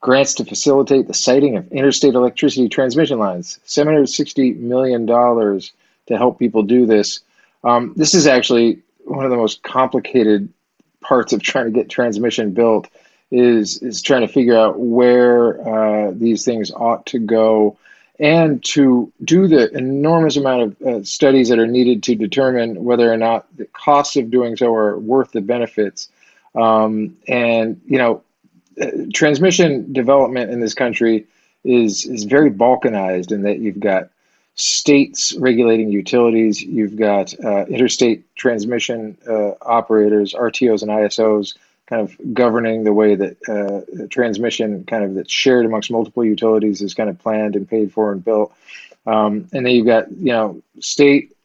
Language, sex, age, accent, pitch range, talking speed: English, male, 40-59, American, 110-130 Hz, 155 wpm